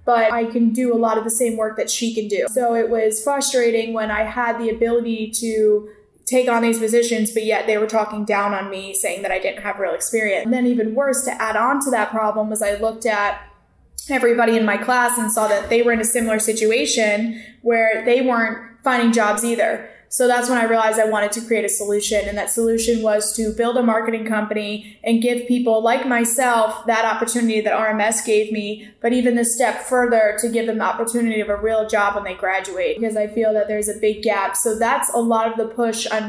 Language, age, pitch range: English, 10-29, 215-235 Hz